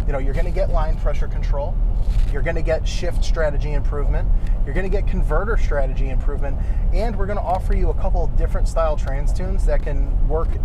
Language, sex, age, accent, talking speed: English, male, 20-39, American, 220 wpm